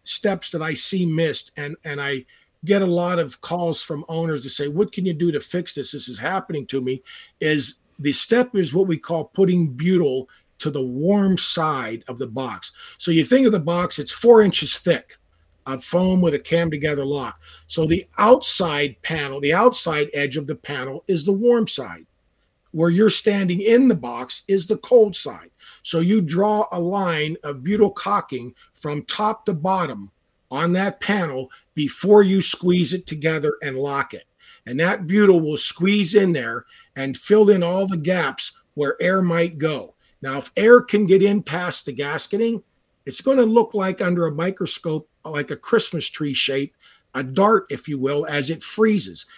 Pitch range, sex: 145-195 Hz, male